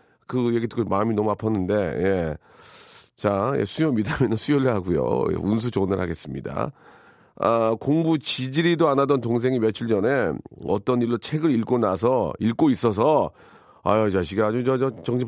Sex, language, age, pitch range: male, Korean, 40-59, 100-140 Hz